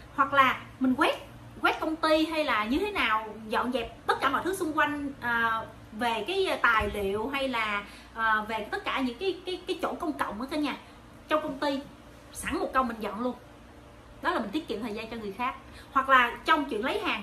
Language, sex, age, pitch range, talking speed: Vietnamese, female, 30-49, 255-340 Hz, 230 wpm